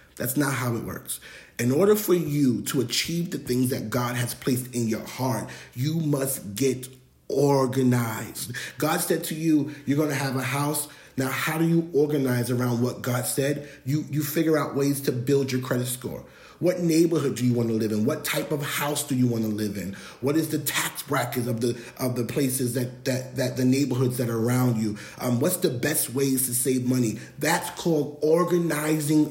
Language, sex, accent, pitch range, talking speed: English, male, American, 125-150 Hz, 205 wpm